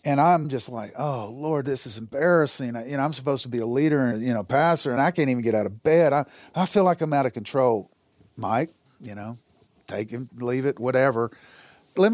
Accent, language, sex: American, English, male